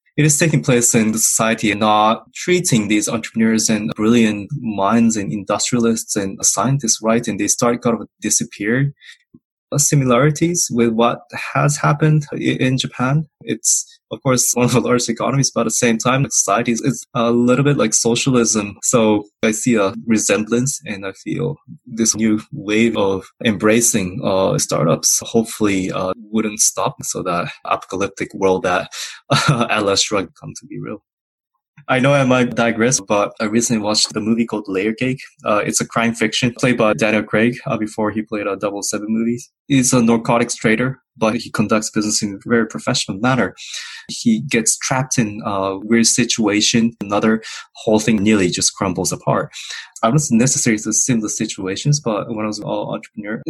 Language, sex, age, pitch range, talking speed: English, male, 20-39, 110-125 Hz, 175 wpm